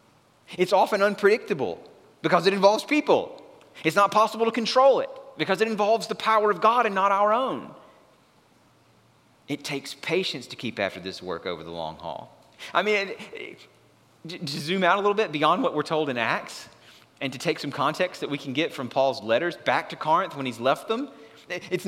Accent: American